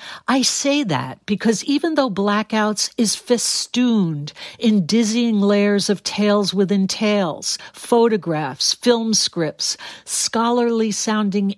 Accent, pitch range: American, 175-225 Hz